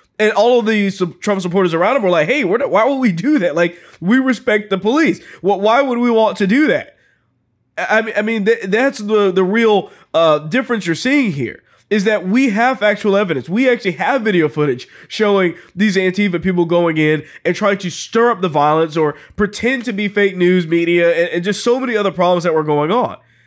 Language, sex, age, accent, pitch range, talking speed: English, male, 20-39, American, 170-215 Hz, 200 wpm